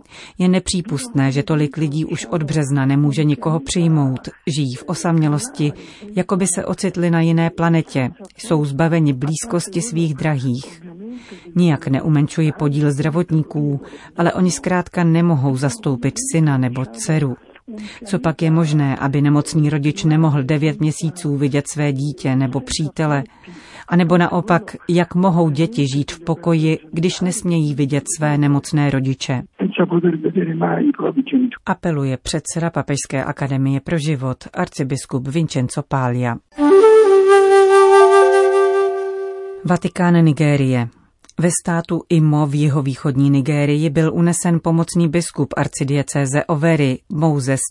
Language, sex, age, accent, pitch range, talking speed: Czech, female, 40-59, native, 140-170 Hz, 115 wpm